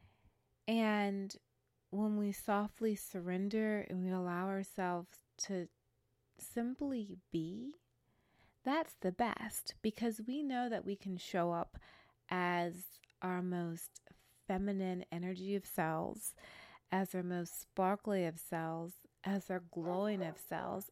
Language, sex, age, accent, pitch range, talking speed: English, female, 20-39, American, 180-215 Hz, 120 wpm